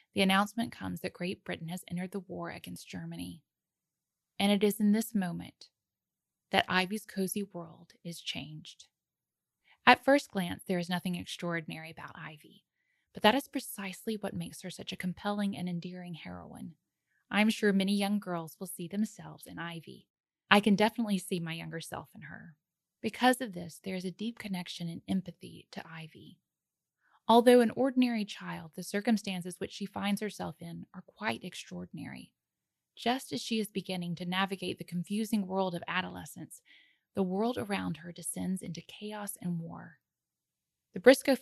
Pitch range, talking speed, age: 175-210 Hz, 165 wpm, 10-29